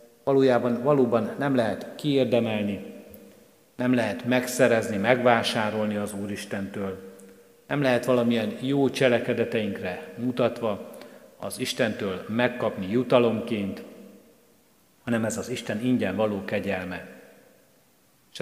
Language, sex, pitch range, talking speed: Hungarian, male, 105-125 Hz, 100 wpm